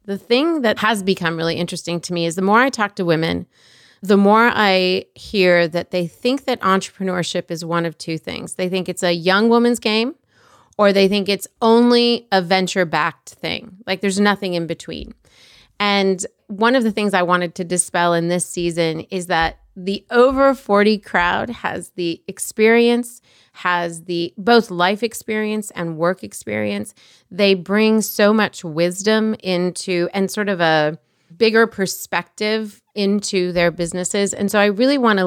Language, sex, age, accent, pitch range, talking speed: English, female, 30-49, American, 175-210 Hz, 170 wpm